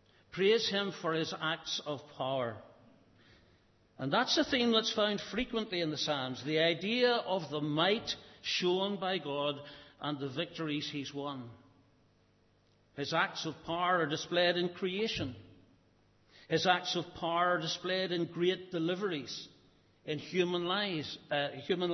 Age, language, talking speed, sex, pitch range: 60-79, English, 135 wpm, male, 130-180 Hz